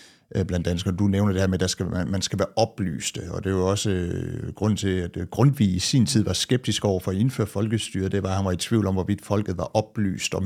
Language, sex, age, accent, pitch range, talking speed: Danish, male, 60-79, native, 90-115 Hz, 250 wpm